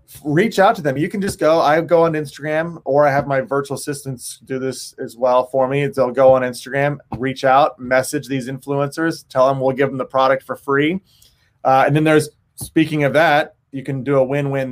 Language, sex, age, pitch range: English, male, 30-49, 130-155 Hz